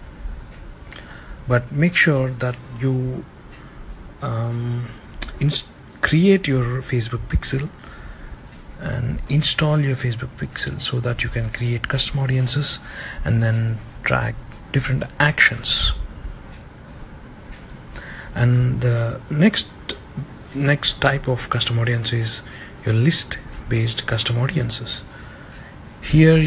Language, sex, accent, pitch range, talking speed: English, male, Indian, 115-140 Hz, 95 wpm